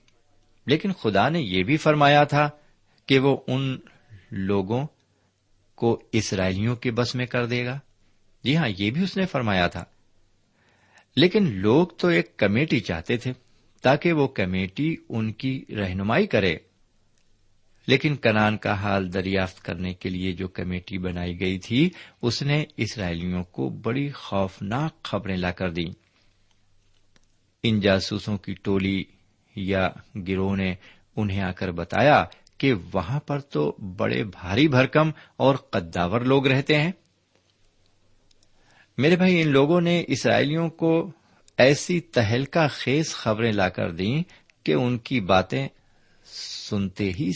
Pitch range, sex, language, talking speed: 95-135 Hz, male, Urdu, 135 wpm